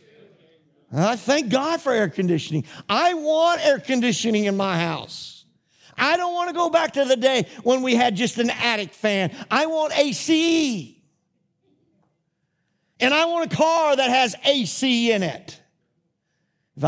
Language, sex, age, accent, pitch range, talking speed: English, male, 50-69, American, 165-250 Hz, 155 wpm